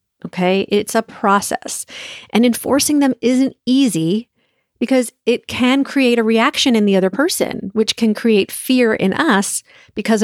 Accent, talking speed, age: American, 150 wpm, 40-59